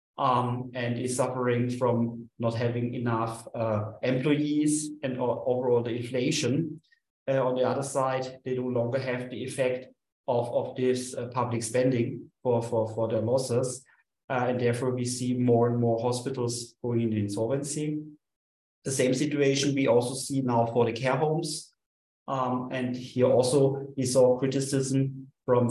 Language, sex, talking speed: English, male, 160 wpm